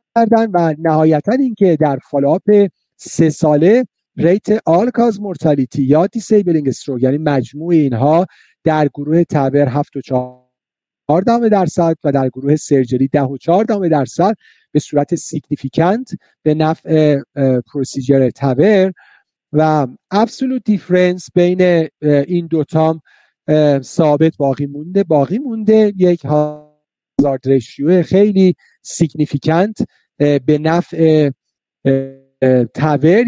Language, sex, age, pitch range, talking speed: Persian, male, 50-69, 145-185 Hz, 100 wpm